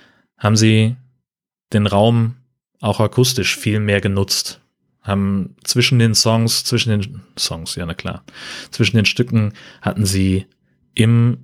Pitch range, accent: 95-120 Hz, German